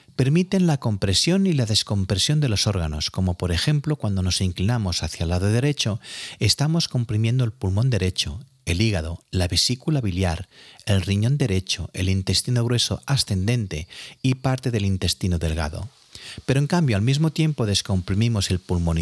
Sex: male